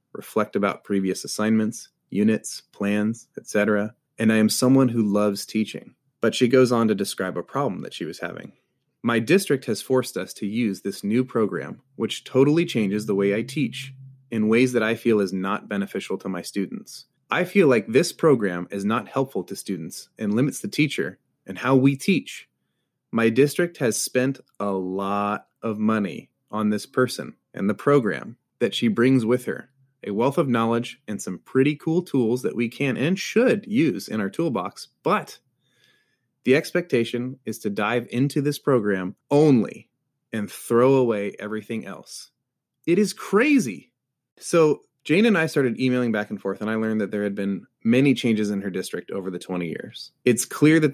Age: 30-49